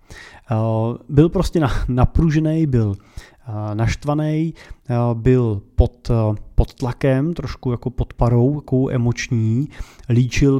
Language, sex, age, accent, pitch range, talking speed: Czech, male, 30-49, native, 115-145 Hz, 90 wpm